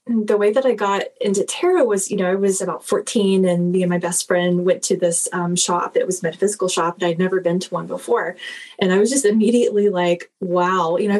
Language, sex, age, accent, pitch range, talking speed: English, female, 20-39, American, 185-225 Hz, 245 wpm